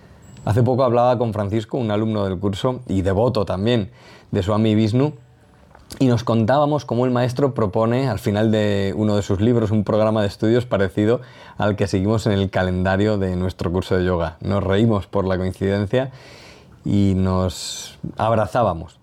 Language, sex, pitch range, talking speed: Spanish, male, 95-120 Hz, 165 wpm